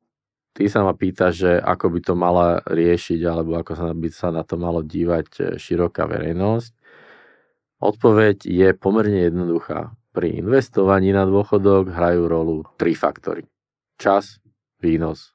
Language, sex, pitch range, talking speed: Slovak, male, 85-105 Hz, 135 wpm